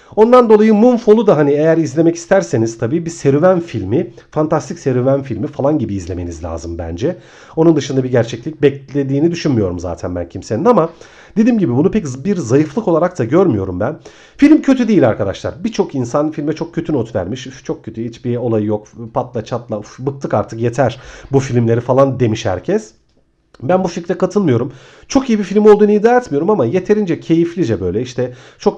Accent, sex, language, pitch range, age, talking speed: native, male, Turkish, 115-175 Hz, 40-59, 175 wpm